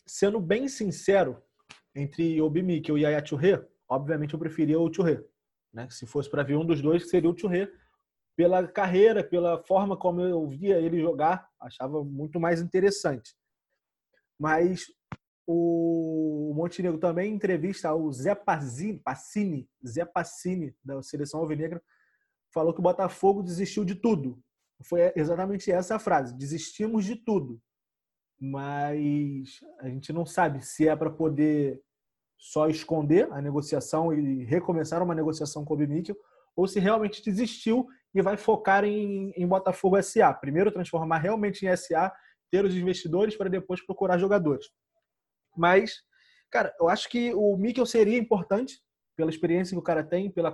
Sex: male